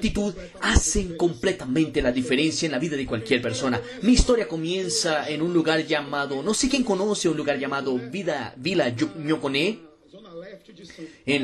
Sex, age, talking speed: male, 30-49, 145 wpm